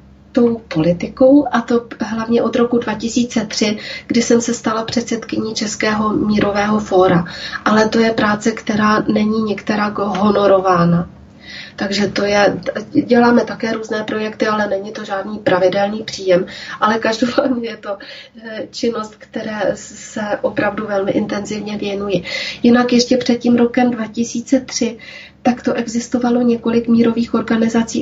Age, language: 30-49, Czech